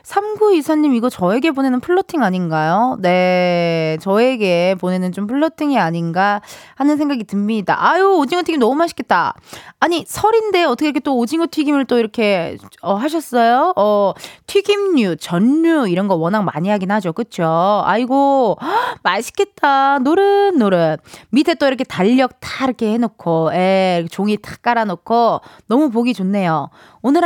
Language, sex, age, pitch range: Korean, female, 20-39, 190-295 Hz